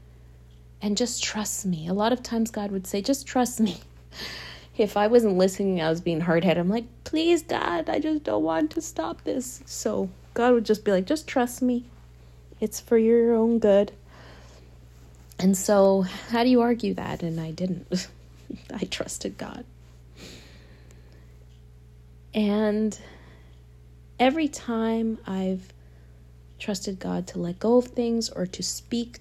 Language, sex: English, female